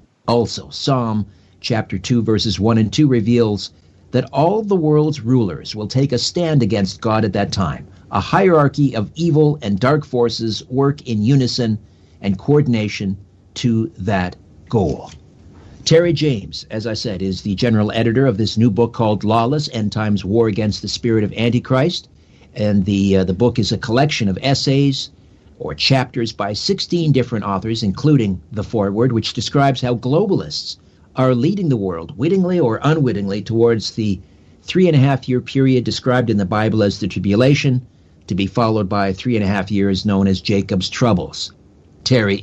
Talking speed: 160 wpm